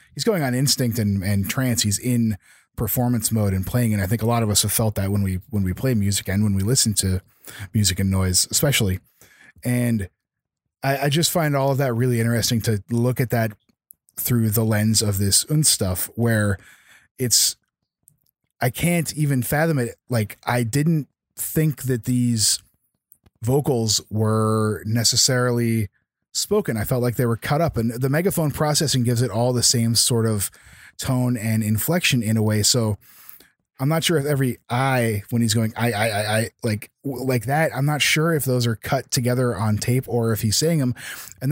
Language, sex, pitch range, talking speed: English, male, 110-130 Hz, 190 wpm